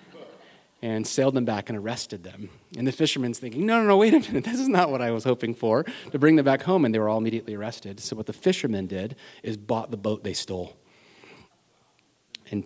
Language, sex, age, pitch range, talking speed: English, male, 30-49, 105-130 Hz, 230 wpm